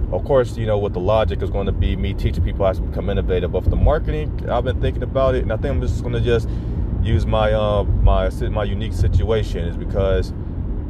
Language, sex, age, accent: English, male, 30-49, American